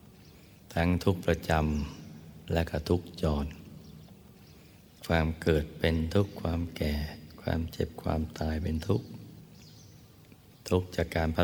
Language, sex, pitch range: Thai, male, 80-90 Hz